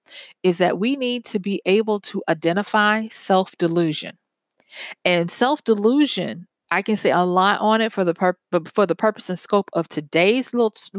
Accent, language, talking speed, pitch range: American, English, 165 wpm, 175-220 Hz